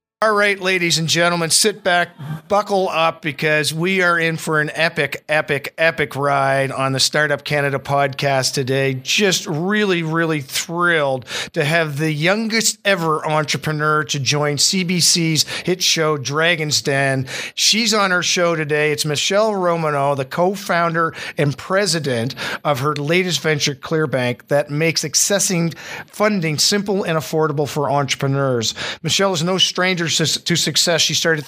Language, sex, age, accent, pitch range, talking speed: English, male, 50-69, American, 145-175 Hz, 145 wpm